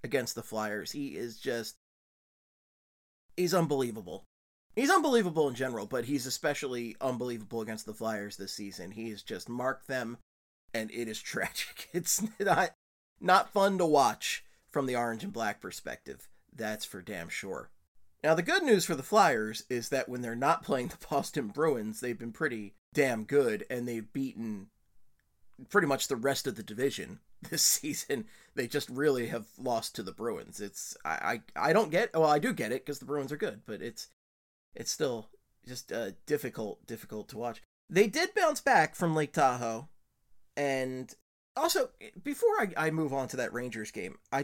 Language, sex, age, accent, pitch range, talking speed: English, male, 30-49, American, 110-175 Hz, 180 wpm